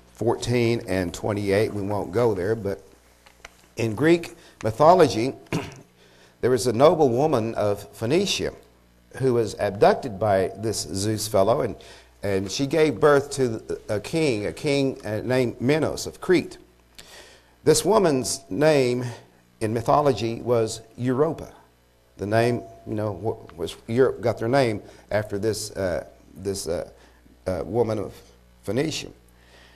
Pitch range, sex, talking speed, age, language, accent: 95-130 Hz, male, 125 wpm, 50-69, English, American